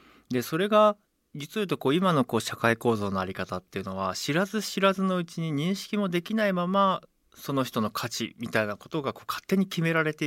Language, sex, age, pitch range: Japanese, male, 40-59, 105-165 Hz